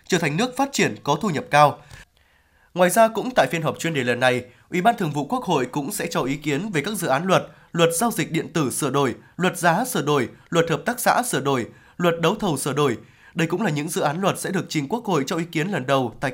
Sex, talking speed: male, 275 wpm